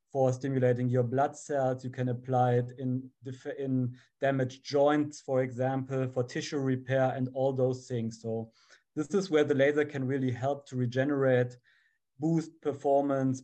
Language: English